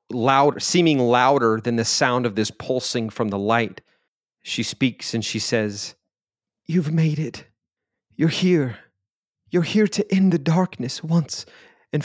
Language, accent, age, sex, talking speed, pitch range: English, American, 30-49, male, 150 wpm, 115-140 Hz